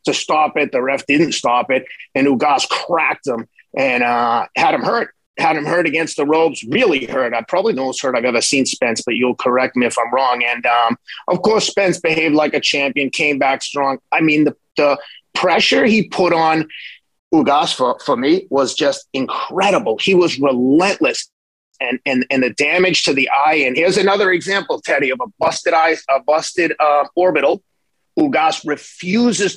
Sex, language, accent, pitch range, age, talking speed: male, English, American, 130-180 Hz, 30-49, 190 wpm